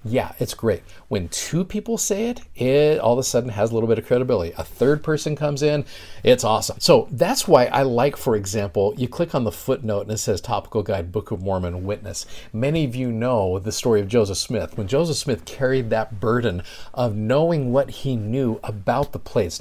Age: 50-69